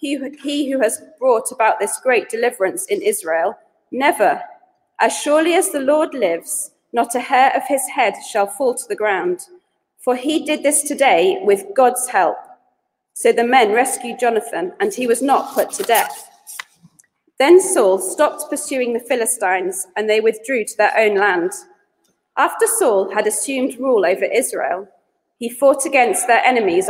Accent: British